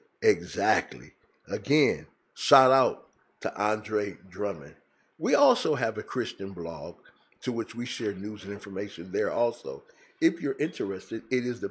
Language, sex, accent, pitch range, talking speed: English, male, American, 100-130 Hz, 145 wpm